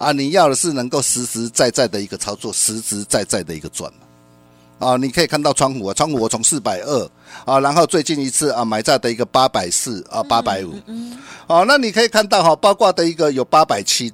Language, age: Chinese, 50-69